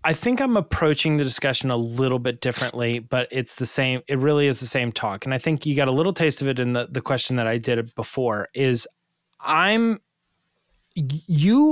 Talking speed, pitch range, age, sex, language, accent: 210 wpm, 125-165 Hz, 20-39, male, English, American